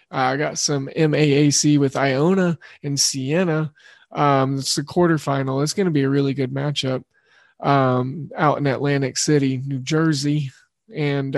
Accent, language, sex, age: American, English, male, 20-39